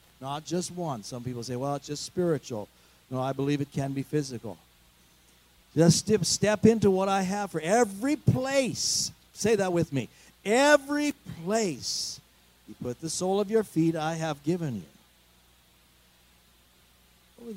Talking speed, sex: 155 wpm, male